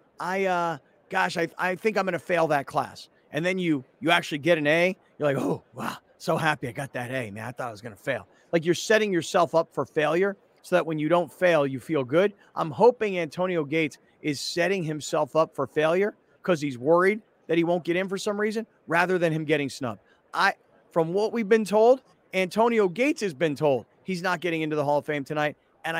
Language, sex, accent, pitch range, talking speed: English, male, American, 155-195 Hz, 230 wpm